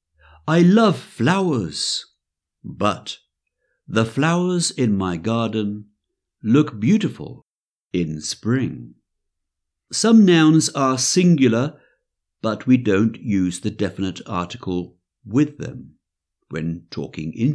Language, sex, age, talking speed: English, male, 60-79, 100 wpm